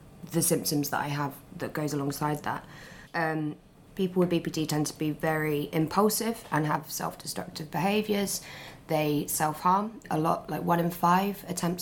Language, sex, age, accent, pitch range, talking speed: English, female, 20-39, British, 150-170 Hz, 155 wpm